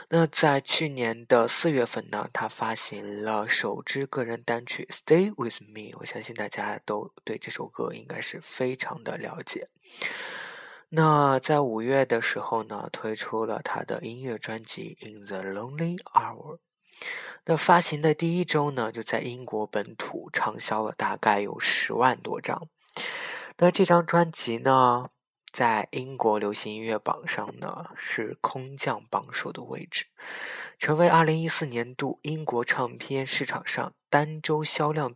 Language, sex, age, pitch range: Chinese, male, 20-39, 115-160 Hz